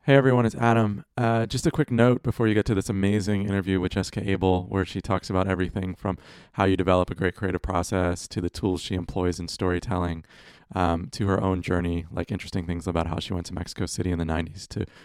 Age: 30-49